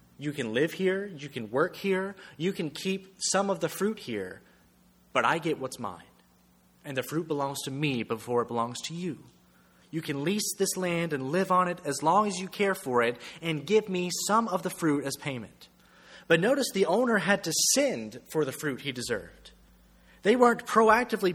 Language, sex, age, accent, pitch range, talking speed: English, male, 30-49, American, 120-185 Hz, 200 wpm